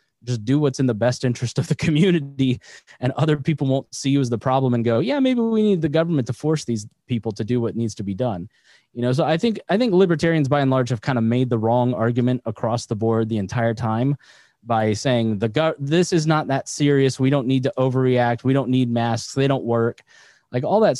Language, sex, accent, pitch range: English, male, American, 120-150 Hz